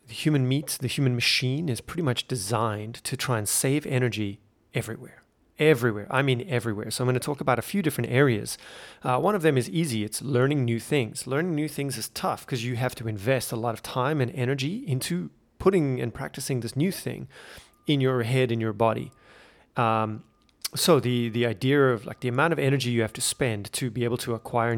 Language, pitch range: English, 115-140 Hz